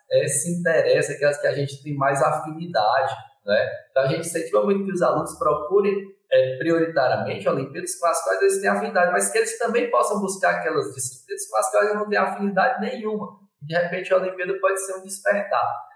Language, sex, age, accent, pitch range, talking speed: Portuguese, male, 20-39, Brazilian, 155-240 Hz, 190 wpm